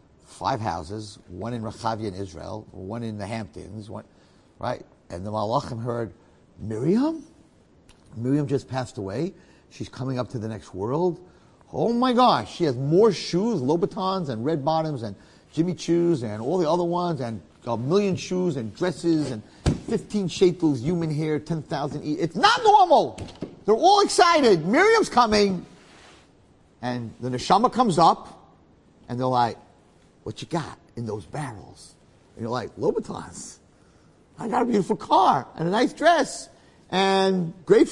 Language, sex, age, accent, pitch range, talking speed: English, male, 50-69, American, 115-190 Hz, 155 wpm